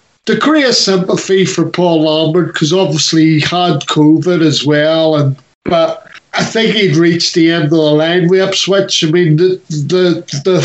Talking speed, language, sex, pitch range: 170 wpm, English, male, 155-180 Hz